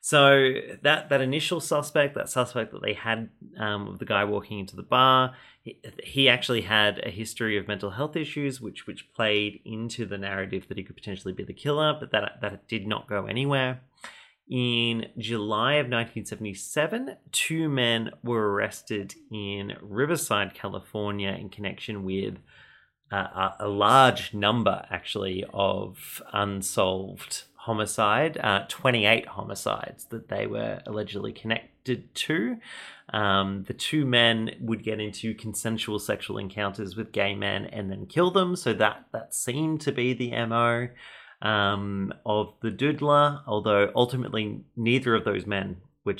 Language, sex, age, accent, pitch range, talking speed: English, male, 30-49, Australian, 100-130 Hz, 150 wpm